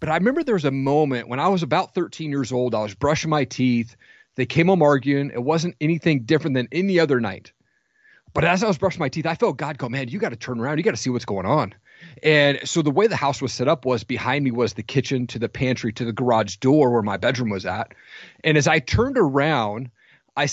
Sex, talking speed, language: male, 255 wpm, English